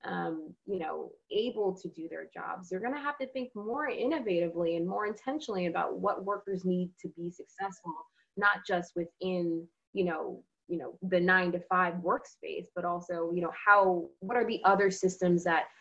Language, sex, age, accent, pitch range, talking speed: English, female, 20-39, American, 170-215 Hz, 185 wpm